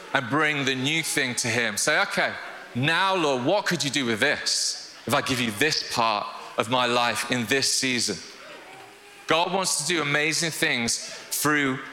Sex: male